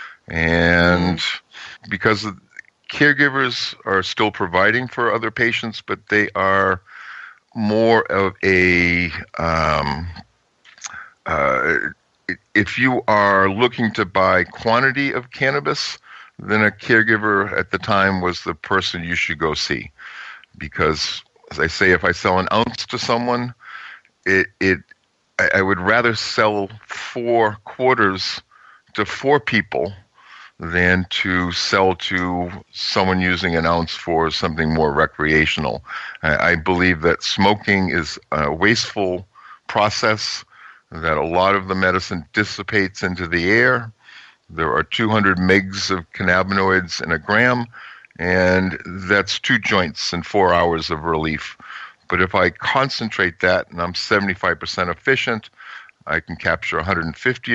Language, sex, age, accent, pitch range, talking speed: English, male, 50-69, American, 90-110 Hz, 130 wpm